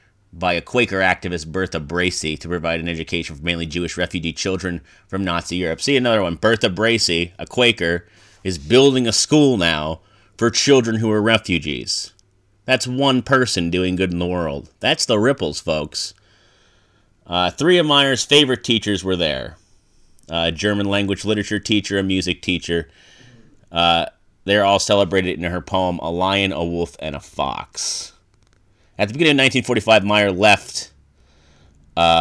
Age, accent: 30-49, American